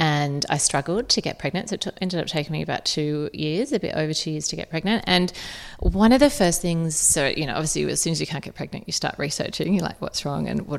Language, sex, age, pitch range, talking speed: English, female, 30-49, 155-200 Hz, 280 wpm